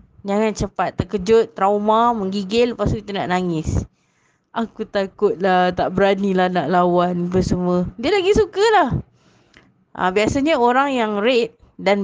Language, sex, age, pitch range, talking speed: Malay, female, 20-39, 190-235 Hz, 130 wpm